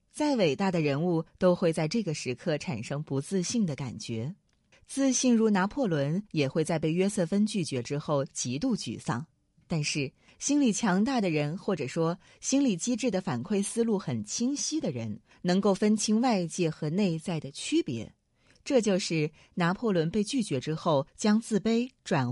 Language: Chinese